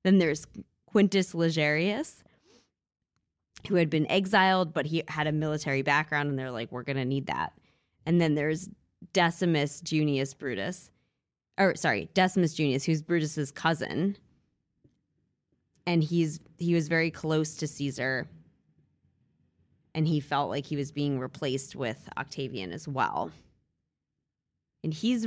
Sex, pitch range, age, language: female, 140-170 Hz, 20-39, English